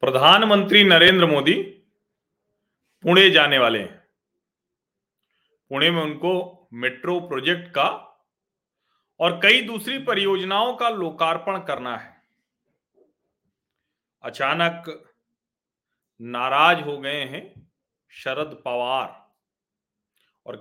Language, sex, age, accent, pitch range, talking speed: Hindi, male, 40-59, native, 160-230 Hz, 85 wpm